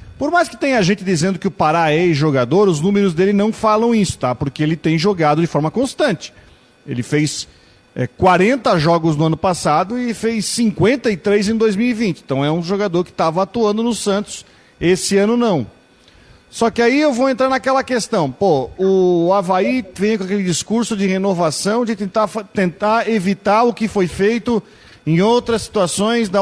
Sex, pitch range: male, 155-205 Hz